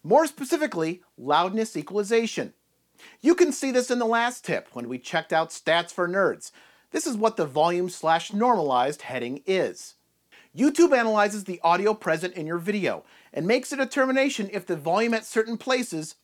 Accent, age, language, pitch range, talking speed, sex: American, 40-59, English, 175-245 Hz, 170 wpm, male